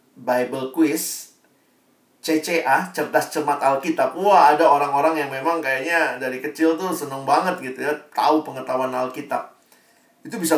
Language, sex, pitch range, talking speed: Indonesian, male, 135-185 Hz, 135 wpm